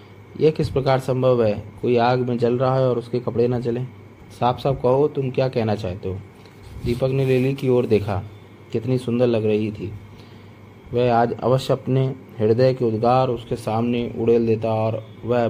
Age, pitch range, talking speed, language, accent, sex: 30-49, 105-130 Hz, 185 wpm, Hindi, native, male